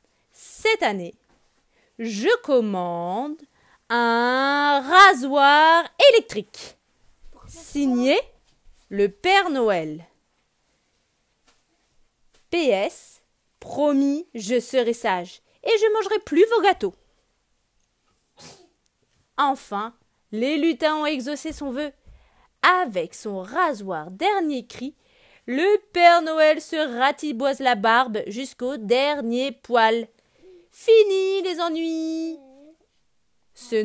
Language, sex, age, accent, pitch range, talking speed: French, female, 30-49, French, 230-335 Hz, 85 wpm